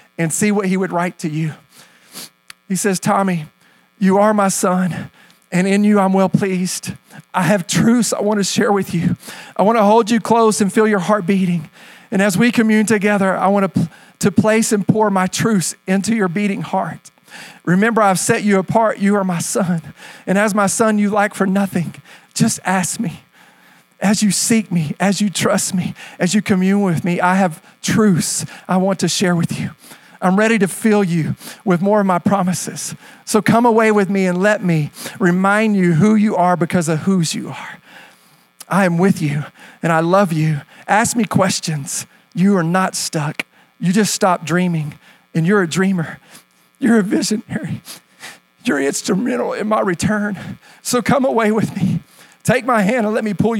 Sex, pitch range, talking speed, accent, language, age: male, 180-210 Hz, 190 wpm, American, English, 40-59